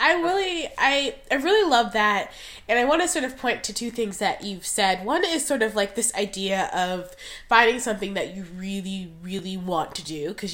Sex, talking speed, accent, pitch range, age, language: female, 215 wpm, American, 190-245 Hz, 20-39, English